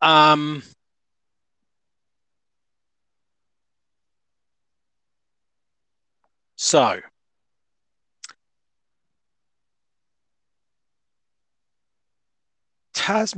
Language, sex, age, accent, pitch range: English, male, 30-49, British, 115-140 Hz